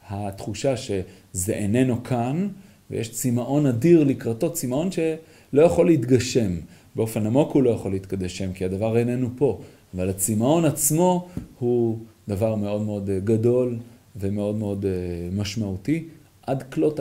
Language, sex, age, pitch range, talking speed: Hebrew, male, 30-49, 100-135 Hz, 125 wpm